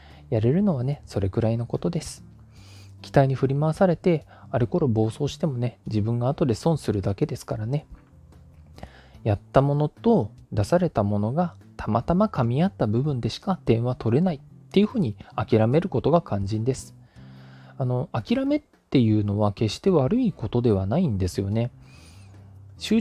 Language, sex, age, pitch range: Japanese, male, 20-39, 105-155 Hz